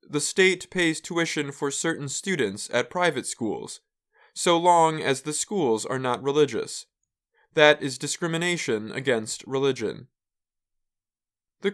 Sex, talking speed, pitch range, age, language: male, 125 wpm, 135-175 Hz, 20-39, English